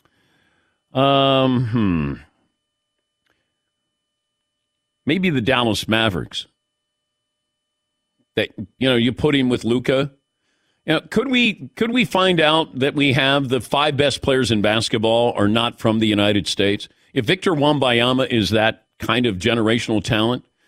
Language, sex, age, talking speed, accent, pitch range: English, male, 50-69, 130 wpm, American, 110-140 Hz